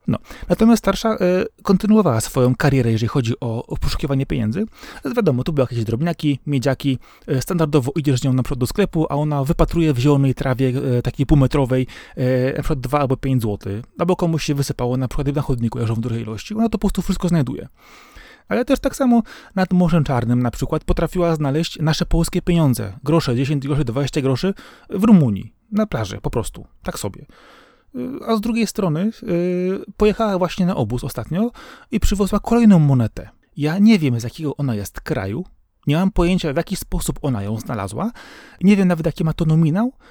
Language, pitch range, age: Polish, 130-180 Hz, 30-49